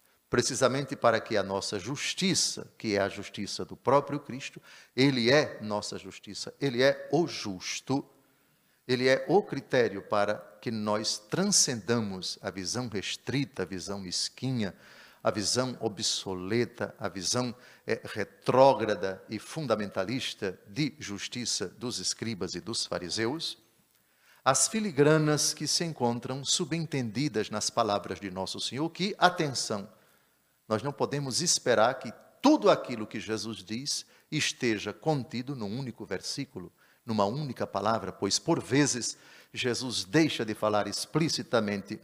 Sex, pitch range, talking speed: male, 105-140 Hz, 125 wpm